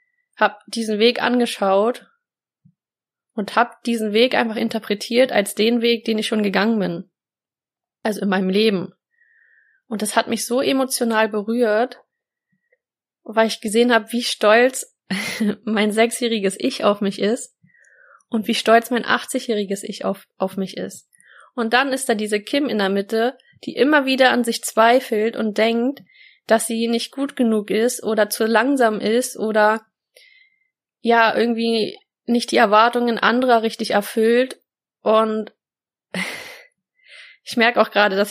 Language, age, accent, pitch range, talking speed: German, 20-39, German, 210-245 Hz, 145 wpm